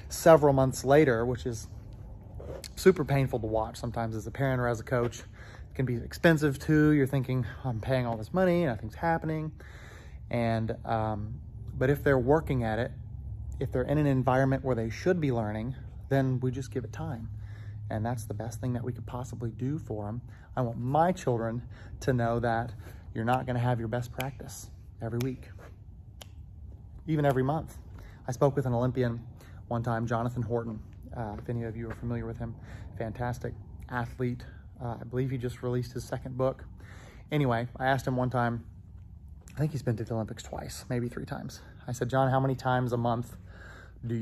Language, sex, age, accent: English, male, 30-49, American